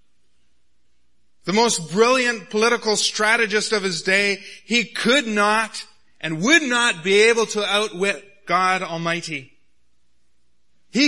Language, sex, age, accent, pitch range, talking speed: English, male, 30-49, American, 150-215 Hz, 115 wpm